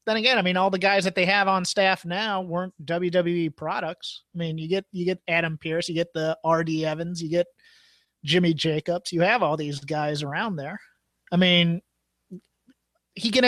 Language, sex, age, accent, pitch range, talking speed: English, male, 30-49, American, 165-205 Hz, 195 wpm